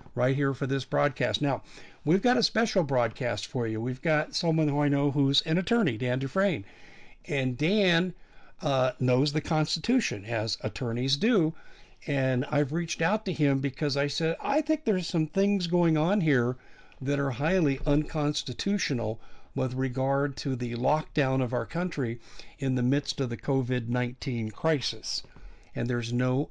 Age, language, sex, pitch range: 50-69, English, male, 125-155 Hz